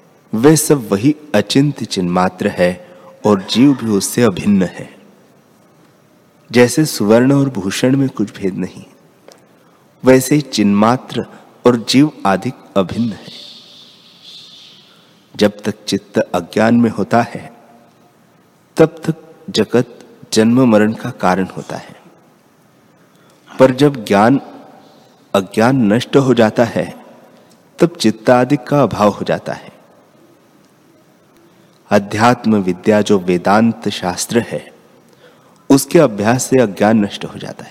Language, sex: Hindi, male